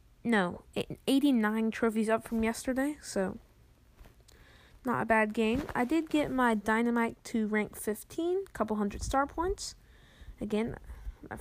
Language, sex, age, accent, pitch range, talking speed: English, female, 10-29, American, 200-230 Hz, 130 wpm